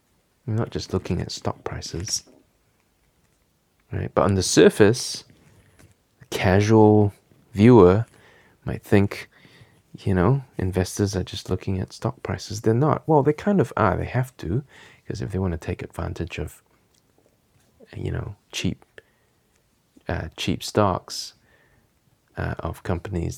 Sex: male